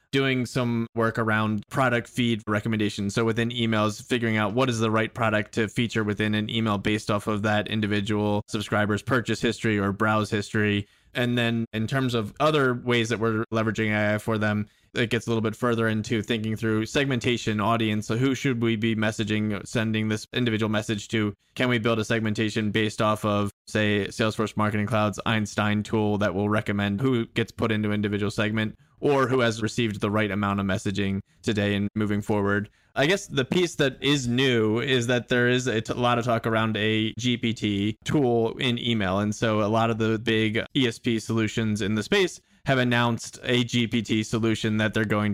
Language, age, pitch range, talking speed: English, 20-39, 105-120 Hz, 195 wpm